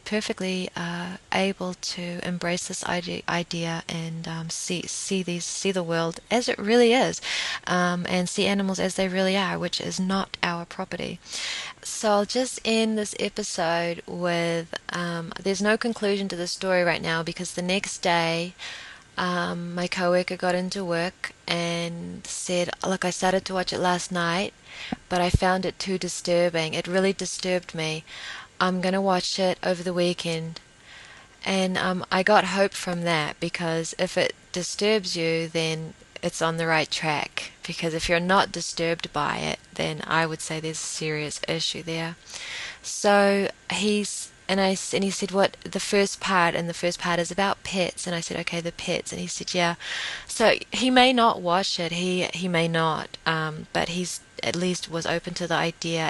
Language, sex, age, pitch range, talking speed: English, female, 20-39, 170-190 Hz, 180 wpm